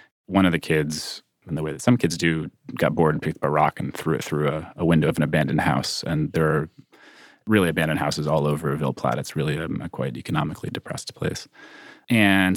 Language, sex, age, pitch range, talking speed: English, male, 30-49, 80-95 Hz, 230 wpm